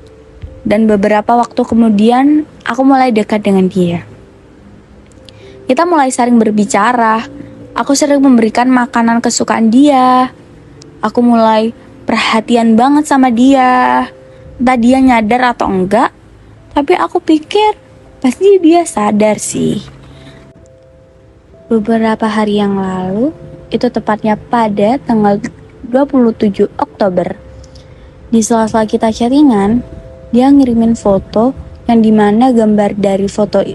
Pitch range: 205-250 Hz